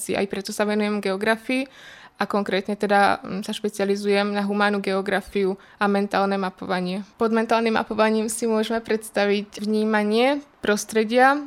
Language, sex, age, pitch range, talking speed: Czech, female, 20-39, 205-215 Hz, 125 wpm